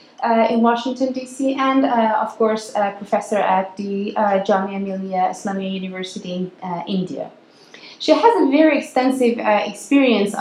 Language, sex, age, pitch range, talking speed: English, female, 20-39, 205-240 Hz, 160 wpm